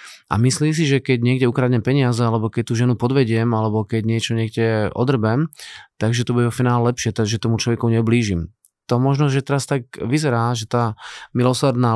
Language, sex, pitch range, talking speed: Slovak, male, 110-125 Hz, 180 wpm